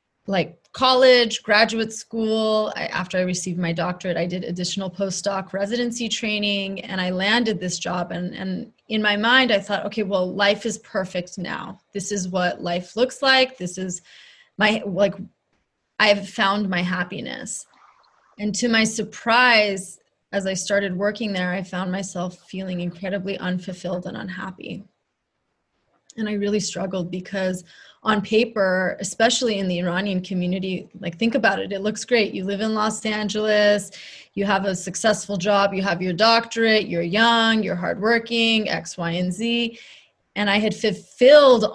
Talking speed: 160 wpm